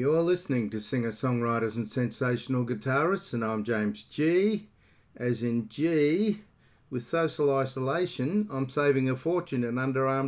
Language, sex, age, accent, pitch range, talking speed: English, male, 50-69, Australian, 110-140 Hz, 140 wpm